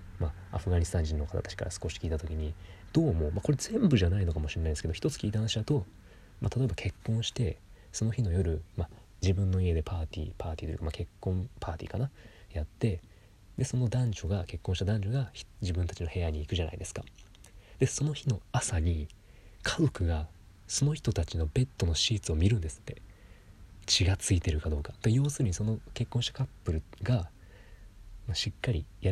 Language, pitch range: Japanese, 85-110 Hz